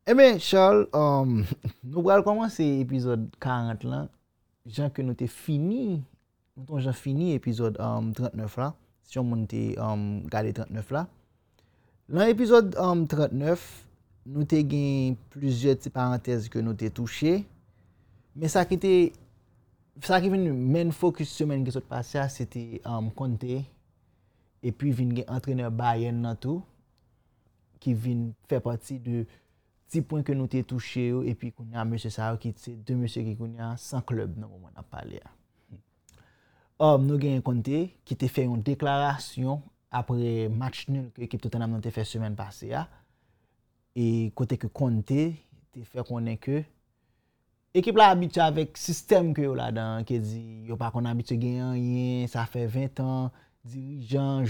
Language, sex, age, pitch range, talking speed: French, male, 30-49, 115-140 Hz, 160 wpm